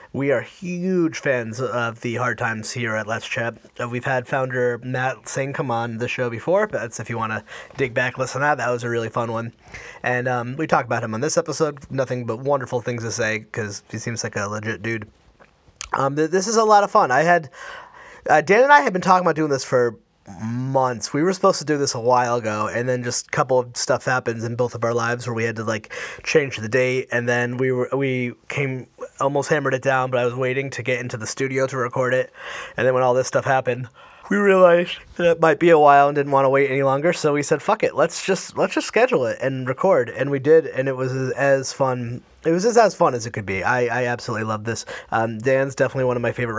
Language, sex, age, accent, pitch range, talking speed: English, male, 30-49, American, 120-140 Hz, 255 wpm